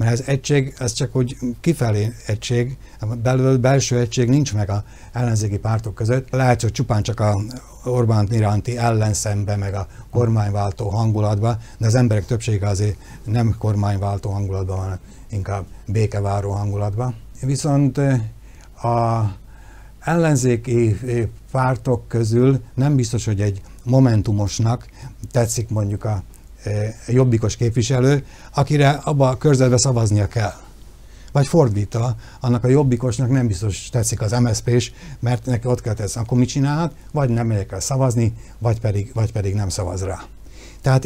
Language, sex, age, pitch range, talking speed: Hungarian, male, 60-79, 105-125 Hz, 135 wpm